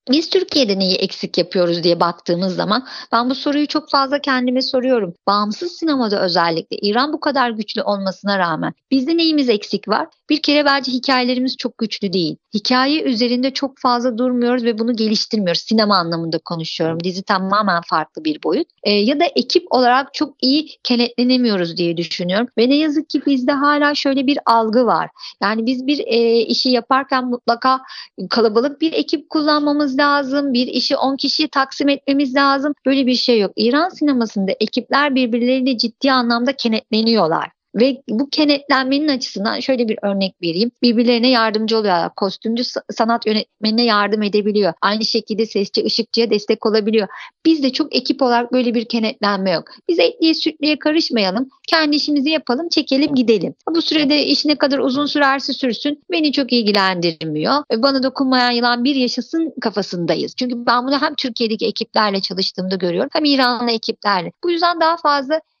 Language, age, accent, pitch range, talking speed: Turkish, 50-69, native, 215-285 Hz, 155 wpm